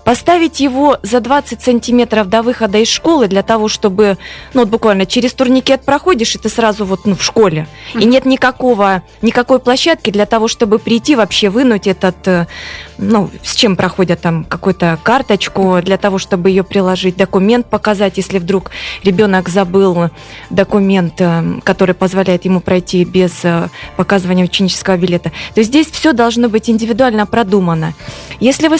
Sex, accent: female, native